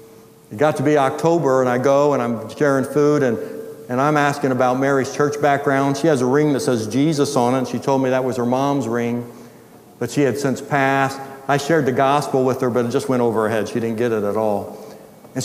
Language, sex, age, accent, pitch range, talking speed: English, male, 60-79, American, 125-155 Hz, 245 wpm